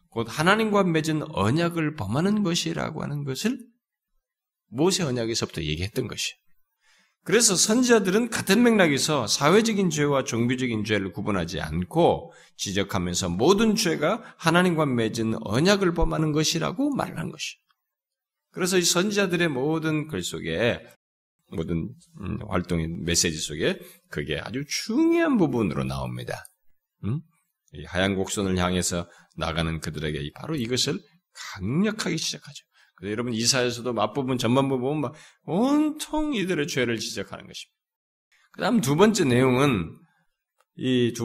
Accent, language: native, Korean